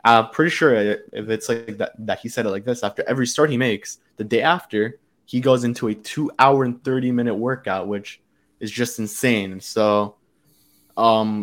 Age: 20-39